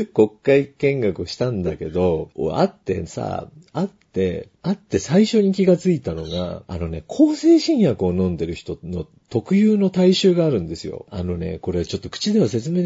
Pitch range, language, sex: 90-140 Hz, Japanese, male